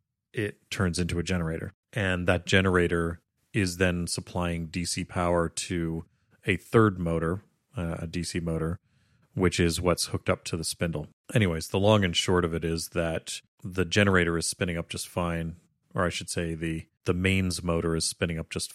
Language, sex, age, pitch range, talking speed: English, male, 30-49, 85-95 Hz, 180 wpm